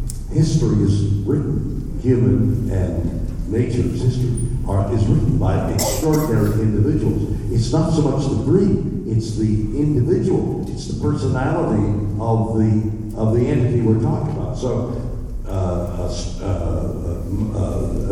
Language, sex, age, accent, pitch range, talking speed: English, male, 60-79, American, 95-120 Hz, 115 wpm